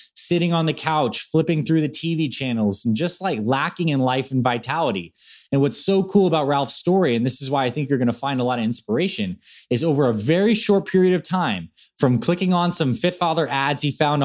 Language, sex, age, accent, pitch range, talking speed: English, male, 20-39, American, 120-165 Hz, 225 wpm